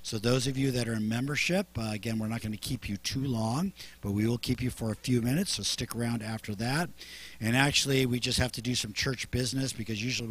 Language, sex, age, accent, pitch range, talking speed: English, male, 50-69, American, 100-130 Hz, 255 wpm